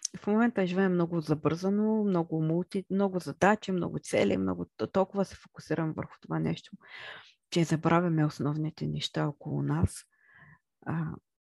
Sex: female